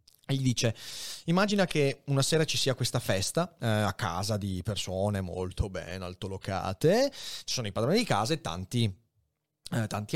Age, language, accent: 30-49, Italian, native